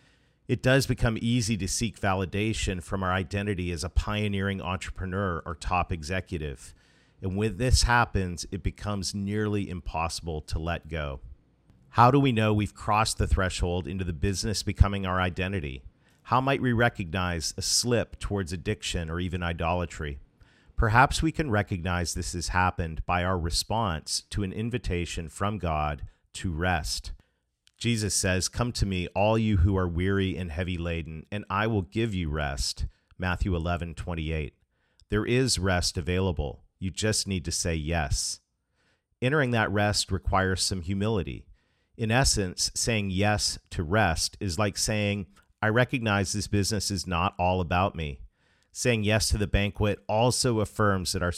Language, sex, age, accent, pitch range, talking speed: English, male, 50-69, American, 85-105 Hz, 155 wpm